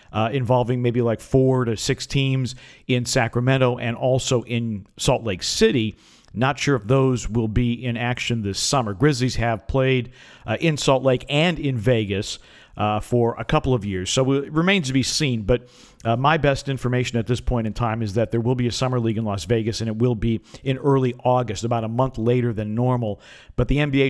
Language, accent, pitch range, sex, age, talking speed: English, American, 110-130 Hz, male, 50-69, 210 wpm